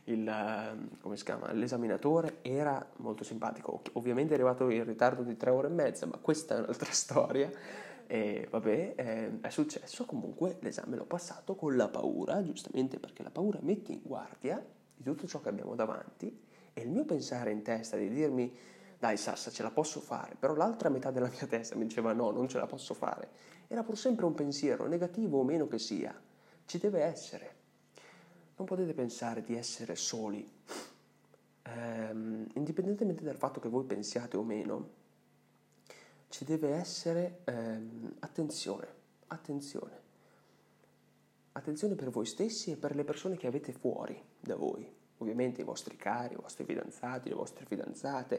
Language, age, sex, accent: Italian, 20-39, male, native